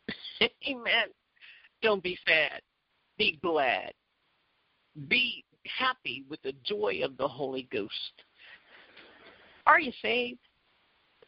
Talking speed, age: 95 wpm, 50-69